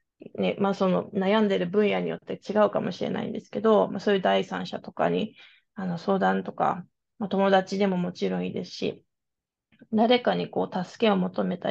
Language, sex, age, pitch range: Japanese, female, 20-39, 180-220 Hz